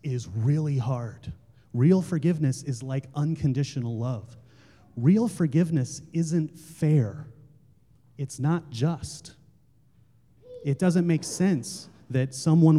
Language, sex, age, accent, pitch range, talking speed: English, male, 30-49, American, 135-170 Hz, 105 wpm